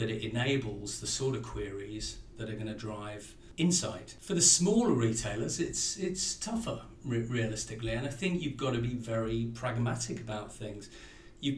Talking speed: 160 wpm